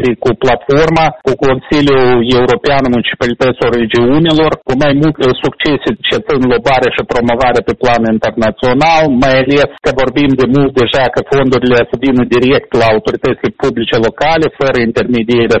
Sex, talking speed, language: male, 140 wpm, Romanian